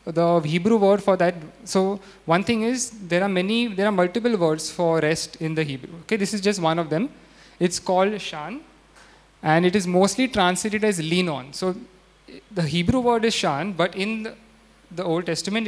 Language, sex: English, male